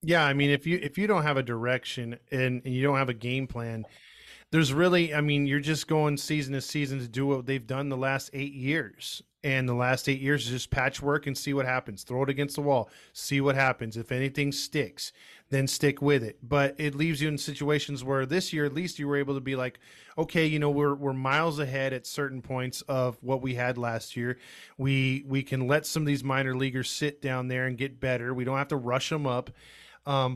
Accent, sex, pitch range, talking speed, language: American, male, 130-150 Hz, 240 wpm, English